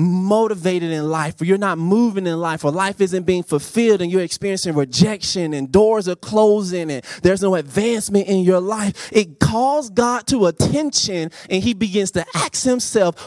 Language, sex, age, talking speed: English, male, 20-39, 180 wpm